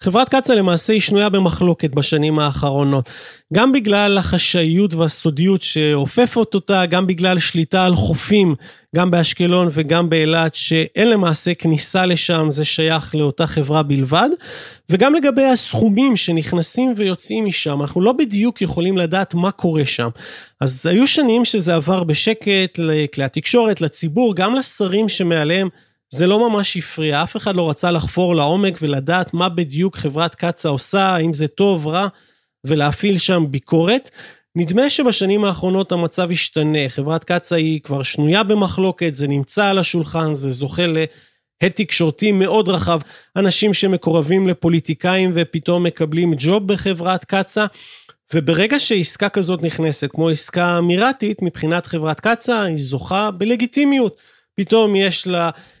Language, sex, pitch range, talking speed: Hebrew, male, 160-200 Hz, 135 wpm